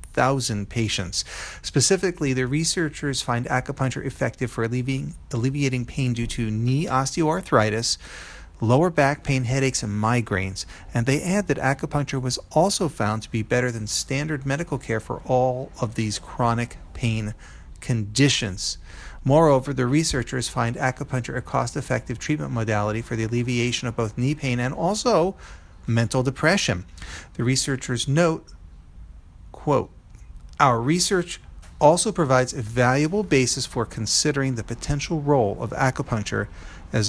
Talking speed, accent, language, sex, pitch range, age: 135 wpm, American, English, male, 105-135 Hz, 40-59